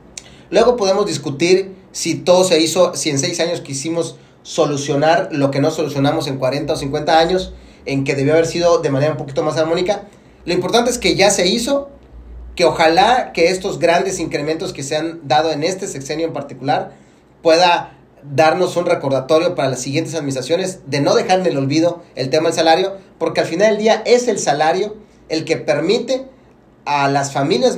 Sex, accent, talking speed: male, Mexican, 190 wpm